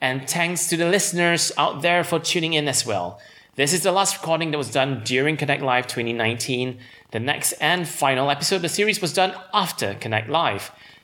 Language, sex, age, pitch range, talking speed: English, male, 30-49, 130-170 Hz, 200 wpm